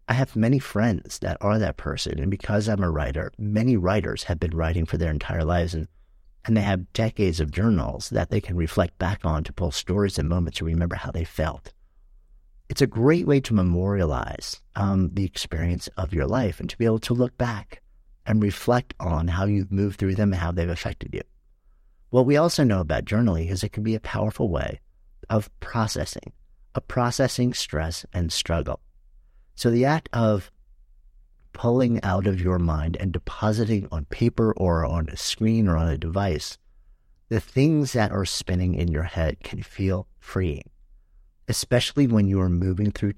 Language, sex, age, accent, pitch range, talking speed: English, male, 50-69, American, 80-110 Hz, 190 wpm